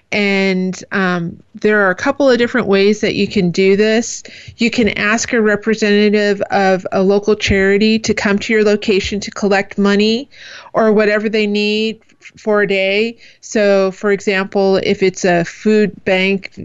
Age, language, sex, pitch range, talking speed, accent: 30-49, English, female, 190-215 Hz, 165 wpm, American